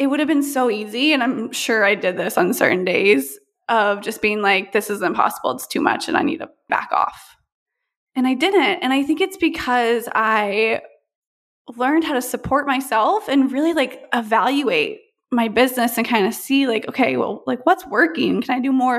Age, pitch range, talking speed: 20-39, 225-305 Hz, 205 wpm